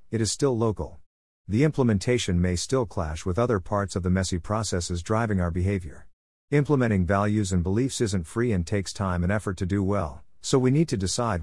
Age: 50-69